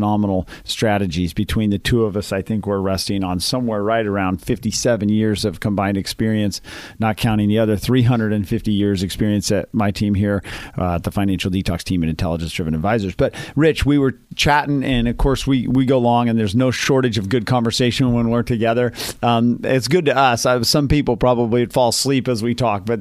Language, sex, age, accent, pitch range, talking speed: English, male, 40-59, American, 105-130 Hz, 205 wpm